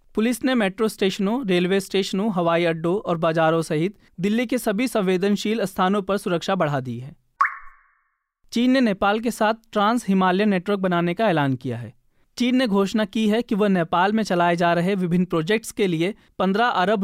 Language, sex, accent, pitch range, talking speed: Hindi, male, native, 175-215 Hz, 140 wpm